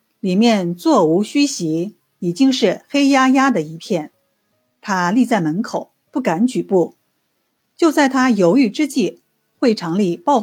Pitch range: 175-250 Hz